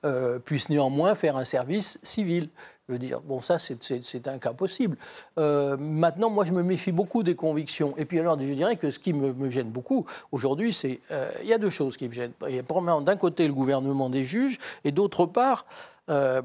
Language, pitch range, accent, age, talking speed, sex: French, 140-180 Hz, French, 60-79, 225 wpm, male